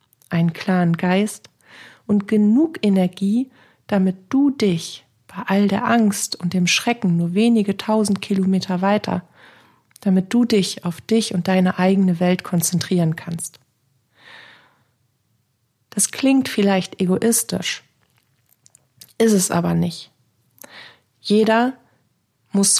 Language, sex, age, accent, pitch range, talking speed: German, female, 40-59, German, 170-200 Hz, 110 wpm